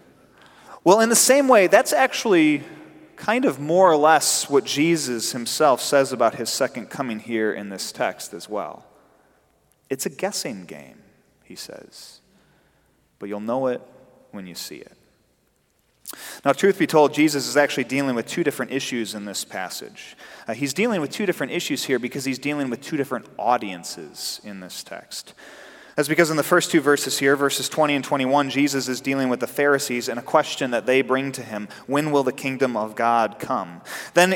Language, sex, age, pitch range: English, male, 30-49, 115-145 Hz